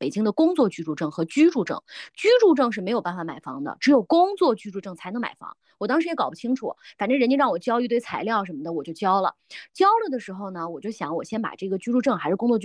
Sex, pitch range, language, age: female, 195-275 Hz, Chinese, 20-39